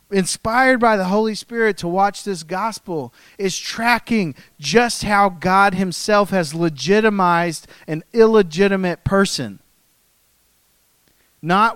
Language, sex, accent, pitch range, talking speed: English, male, American, 140-190 Hz, 105 wpm